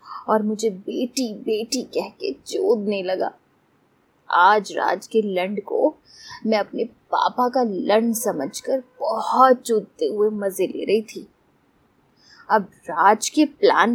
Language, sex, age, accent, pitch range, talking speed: Hindi, female, 20-39, native, 205-255 Hz, 120 wpm